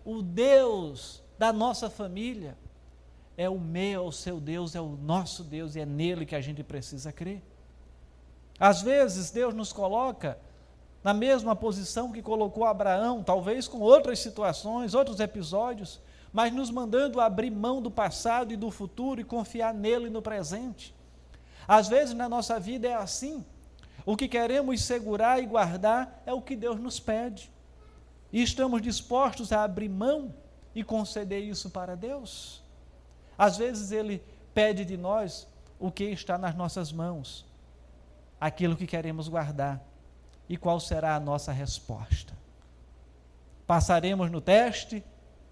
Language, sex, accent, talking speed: Portuguese, male, Brazilian, 145 wpm